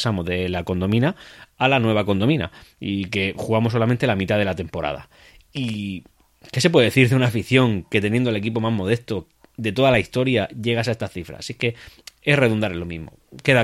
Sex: male